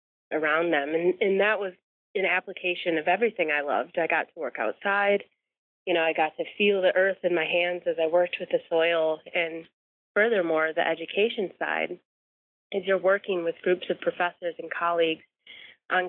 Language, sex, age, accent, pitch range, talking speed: English, female, 30-49, American, 160-180 Hz, 185 wpm